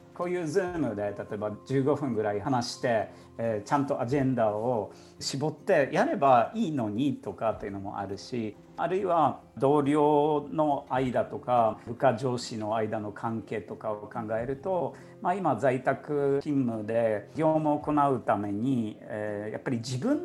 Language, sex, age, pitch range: Japanese, male, 50-69, 115-150 Hz